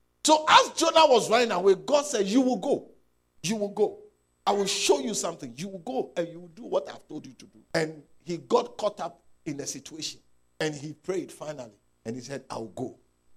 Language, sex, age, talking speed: English, male, 50-69, 225 wpm